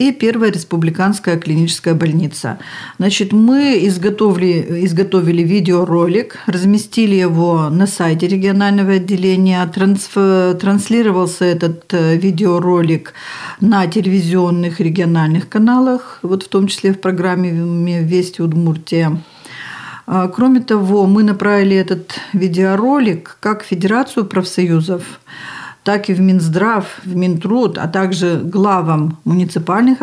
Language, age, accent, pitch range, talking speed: Russian, 50-69, native, 175-205 Hz, 100 wpm